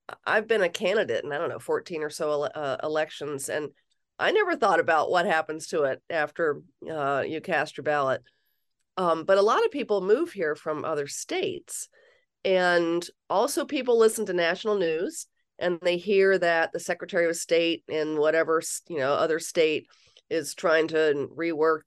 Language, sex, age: English, female, 40-59